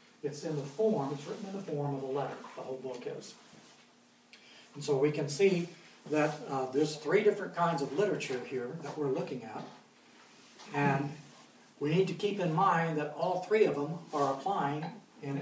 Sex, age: male, 60-79